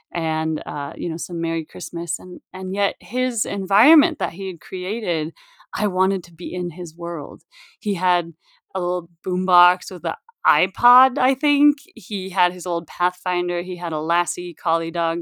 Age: 30-49